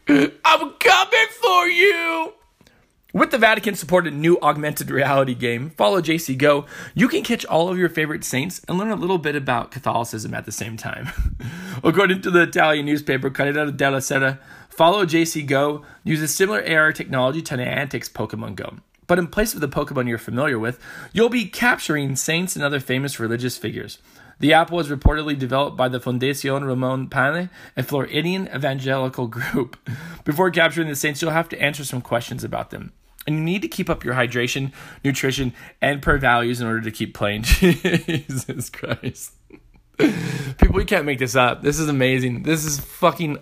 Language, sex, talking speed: English, male, 175 wpm